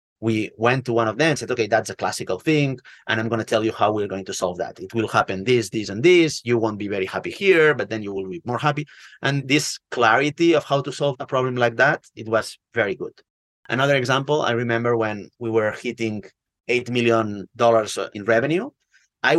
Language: English